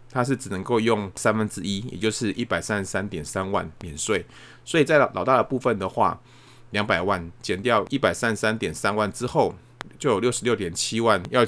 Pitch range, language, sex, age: 95-125 Hz, Chinese, male, 30-49